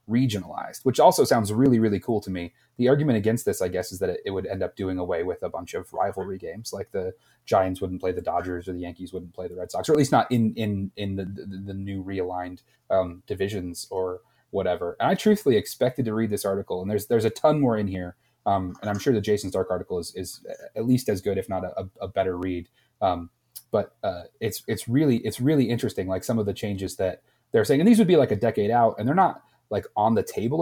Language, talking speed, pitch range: English, 250 wpm, 95-120 Hz